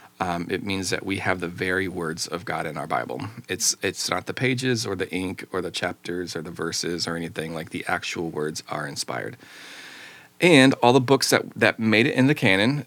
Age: 30-49